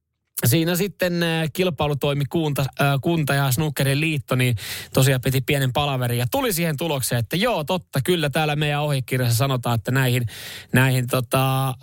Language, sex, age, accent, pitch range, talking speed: Finnish, male, 20-39, native, 125-145 Hz, 145 wpm